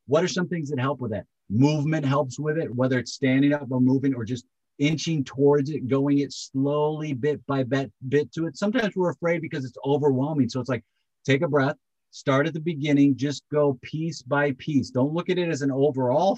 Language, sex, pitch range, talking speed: English, male, 125-150 Hz, 220 wpm